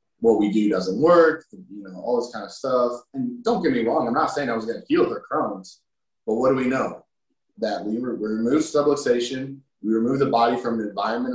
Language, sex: English, male